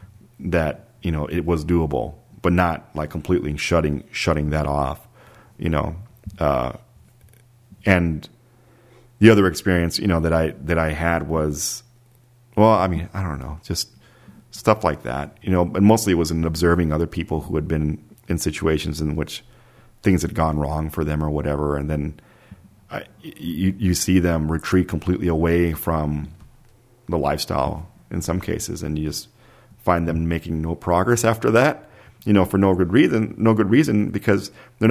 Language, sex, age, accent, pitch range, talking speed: English, male, 40-59, American, 80-110 Hz, 175 wpm